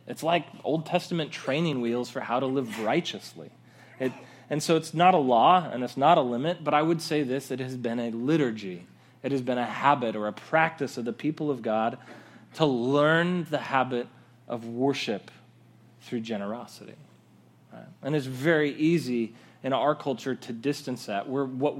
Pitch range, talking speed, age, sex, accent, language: 115-150 Hz, 185 wpm, 30-49, male, American, English